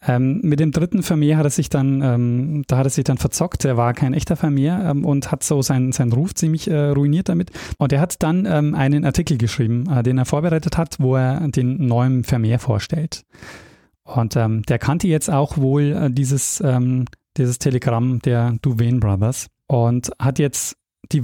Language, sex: German, male